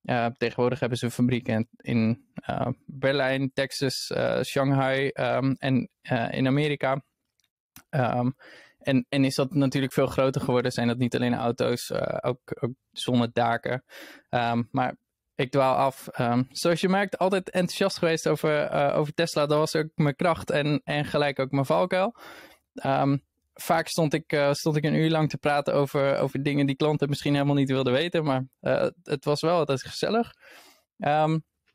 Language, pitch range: Dutch, 130-155 Hz